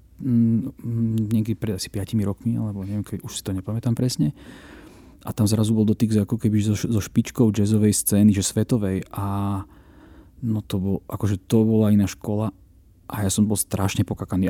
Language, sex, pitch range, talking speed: Slovak, male, 95-115 Hz, 175 wpm